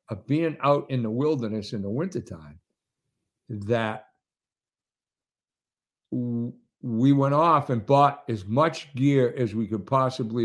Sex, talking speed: male, 125 wpm